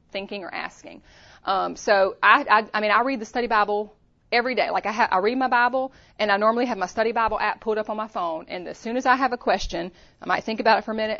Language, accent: English, American